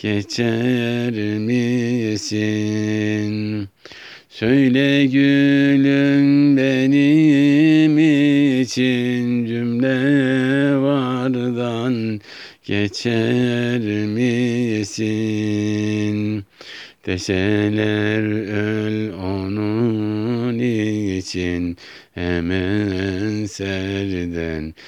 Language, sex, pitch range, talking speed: Turkish, male, 100-125 Hz, 40 wpm